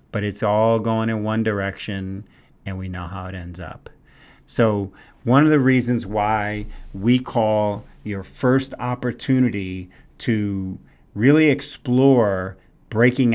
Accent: American